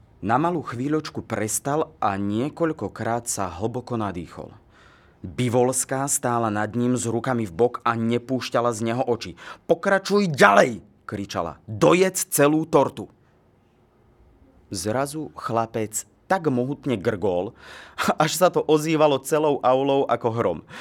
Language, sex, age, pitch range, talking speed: Slovak, male, 30-49, 110-140 Hz, 125 wpm